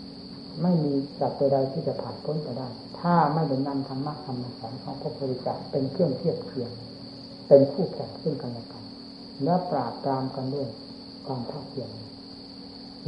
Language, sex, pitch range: Thai, female, 135-165 Hz